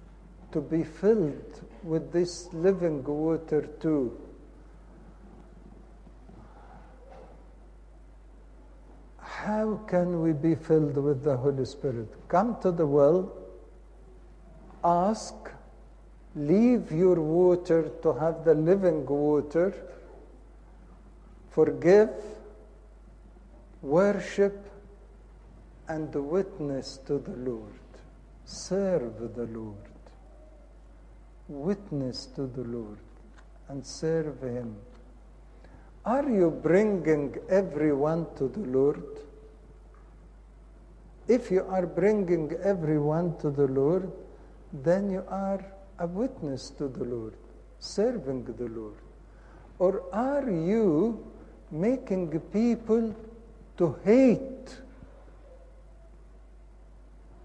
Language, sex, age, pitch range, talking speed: English, male, 60-79, 145-195 Hz, 85 wpm